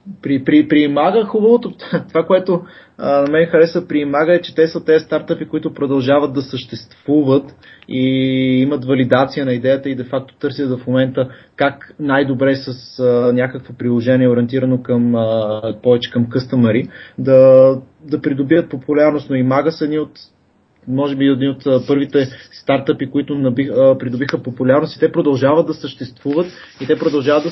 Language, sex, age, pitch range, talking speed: Bulgarian, male, 20-39, 125-150 Hz, 155 wpm